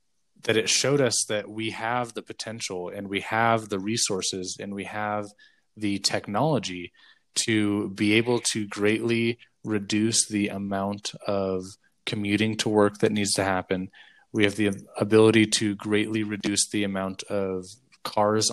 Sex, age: male, 20-39